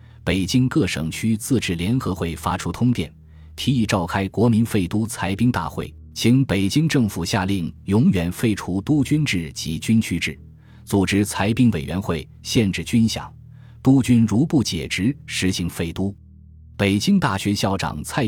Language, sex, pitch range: Chinese, male, 90-115 Hz